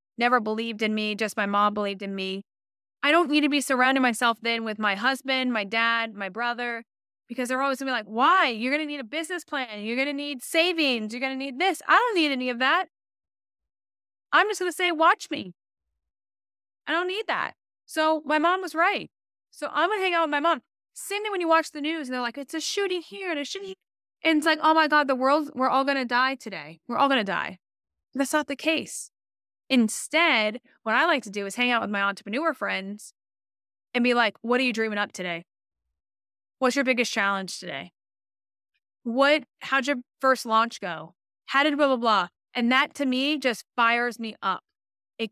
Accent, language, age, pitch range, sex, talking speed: American, English, 20-39, 205-285 Hz, female, 220 wpm